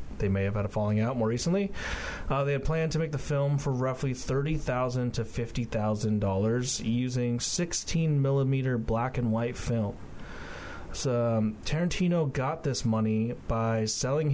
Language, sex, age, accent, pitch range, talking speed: English, male, 30-49, American, 110-135 Hz, 150 wpm